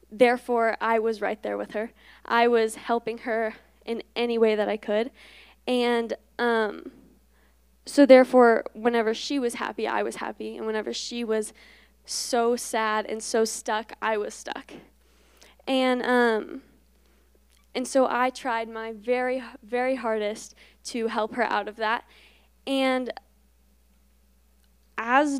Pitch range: 215-250 Hz